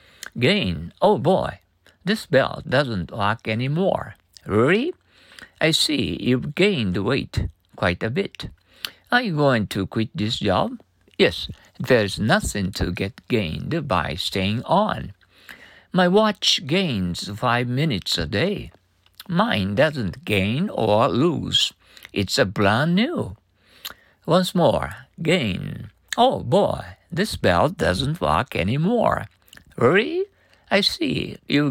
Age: 60-79